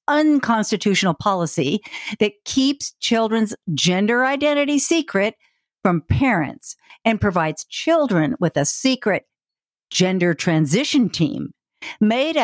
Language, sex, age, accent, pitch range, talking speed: English, female, 50-69, American, 165-260 Hz, 95 wpm